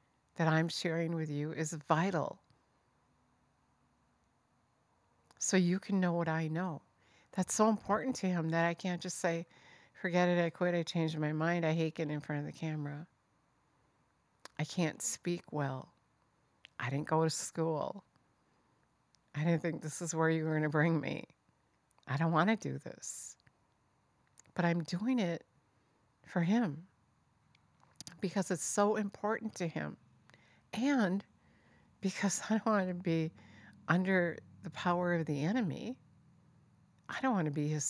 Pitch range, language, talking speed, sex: 150-180 Hz, English, 155 wpm, female